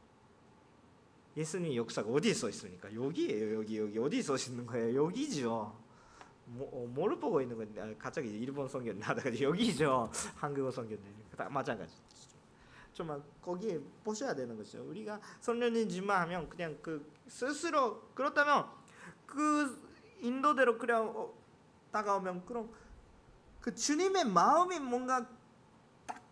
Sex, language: male, Korean